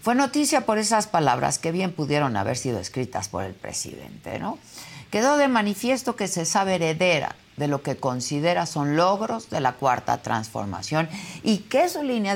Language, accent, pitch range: Spanish, Mexican, 125-200 Hz